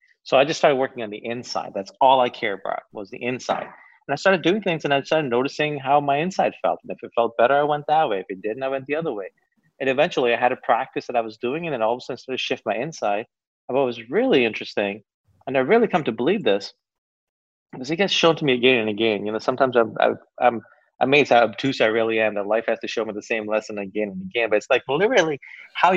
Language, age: English, 30-49